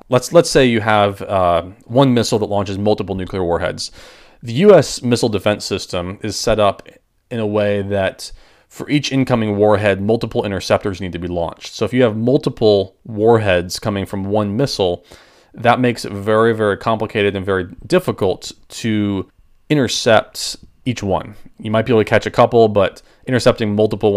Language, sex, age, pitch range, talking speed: English, male, 30-49, 100-115 Hz, 170 wpm